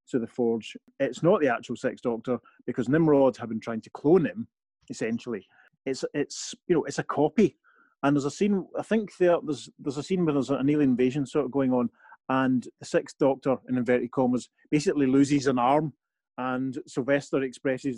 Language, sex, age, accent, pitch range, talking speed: English, male, 30-49, British, 130-165 Hz, 195 wpm